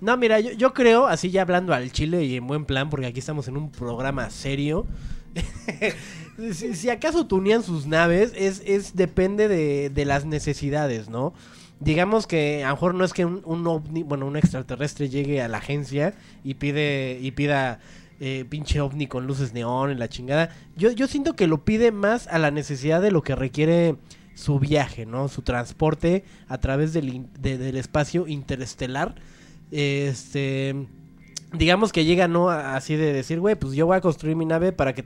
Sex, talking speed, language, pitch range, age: male, 190 wpm, Spanish, 135-175 Hz, 20-39